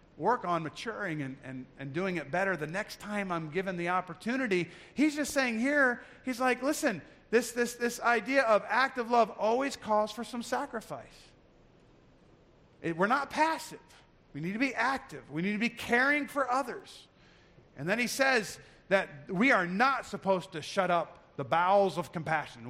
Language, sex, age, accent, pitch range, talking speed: English, male, 40-59, American, 170-230 Hz, 175 wpm